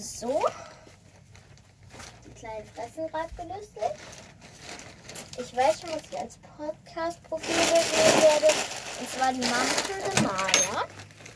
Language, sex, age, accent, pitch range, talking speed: German, female, 10-29, German, 210-315 Hz, 105 wpm